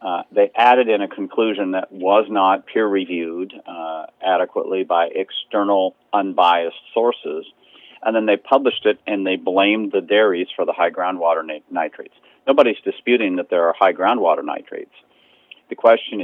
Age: 50-69